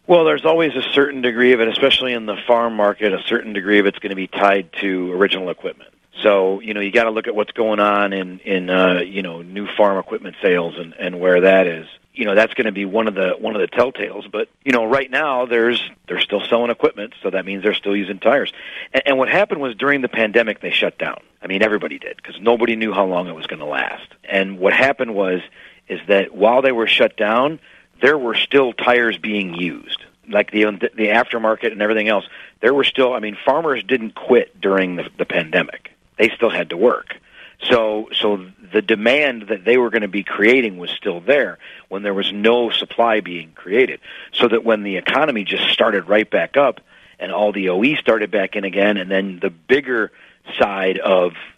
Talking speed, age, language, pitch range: 220 wpm, 40-59, English, 95-115 Hz